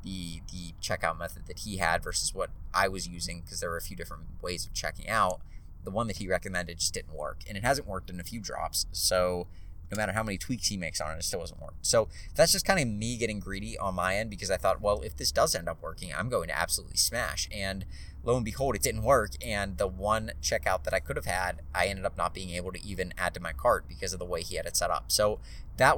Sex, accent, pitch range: male, American, 85-100 Hz